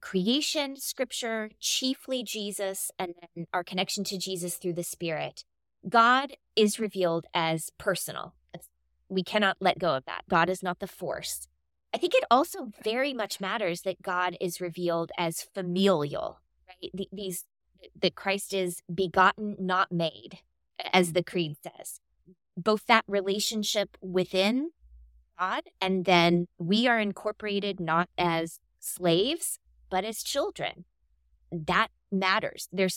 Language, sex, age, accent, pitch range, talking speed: English, female, 20-39, American, 165-205 Hz, 135 wpm